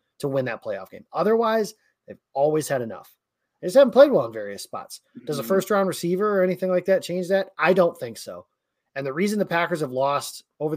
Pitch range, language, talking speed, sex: 135-190 Hz, English, 225 wpm, male